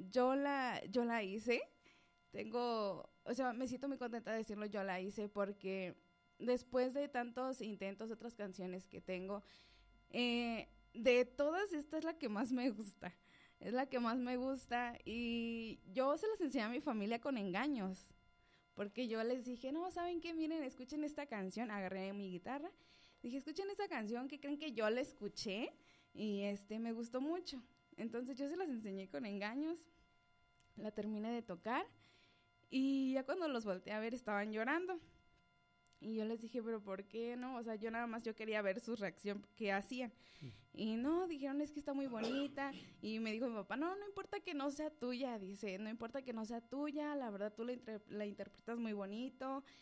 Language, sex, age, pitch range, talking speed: Spanish, female, 20-39, 210-275 Hz, 190 wpm